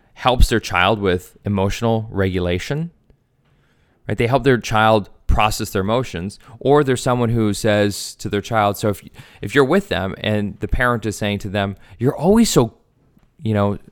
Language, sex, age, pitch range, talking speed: English, male, 30-49, 105-130 Hz, 170 wpm